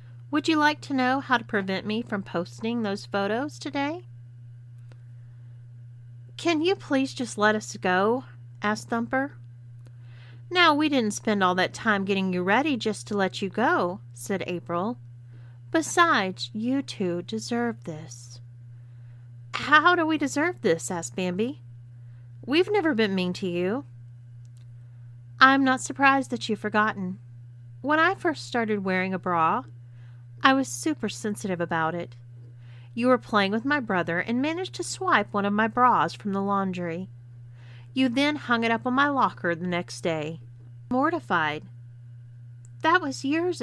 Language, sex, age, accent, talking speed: English, female, 40-59, American, 150 wpm